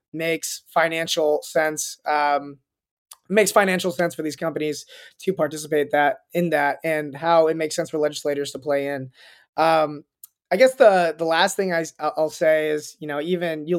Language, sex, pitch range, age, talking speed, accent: English, male, 155-190 Hz, 20-39, 175 wpm, American